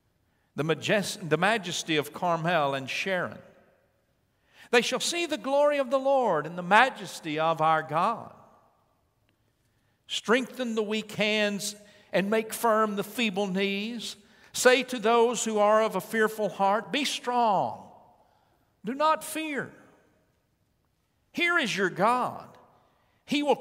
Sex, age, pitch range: male, 60-79, 175-245 Hz